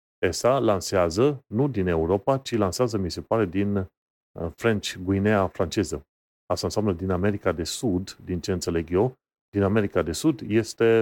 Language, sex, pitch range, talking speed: Romanian, male, 90-105 Hz, 160 wpm